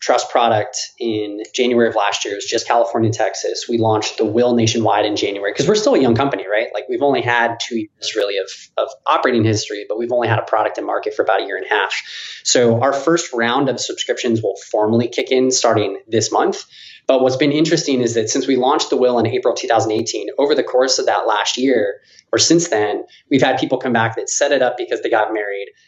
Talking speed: 235 wpm